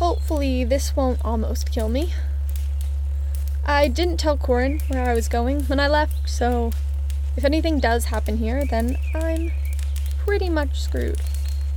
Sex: female